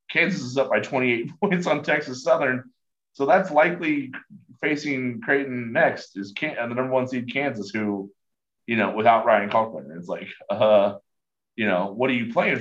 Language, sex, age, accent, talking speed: English, male, 30-49, American, 175 wpm